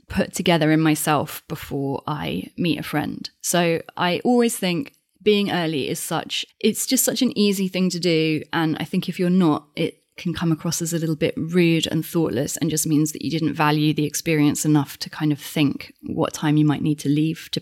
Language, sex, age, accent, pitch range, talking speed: English, female, 20-39, British, 160-195 Hz, 220 wpm